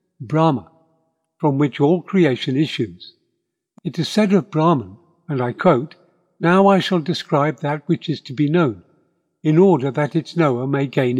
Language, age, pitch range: English, 60-79, 135-170 Hz